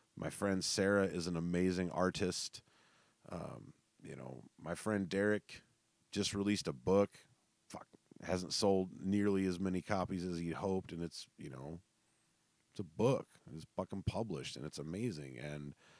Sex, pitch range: male, 90-110 Hz